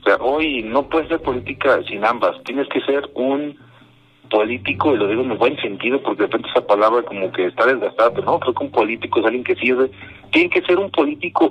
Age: 50-69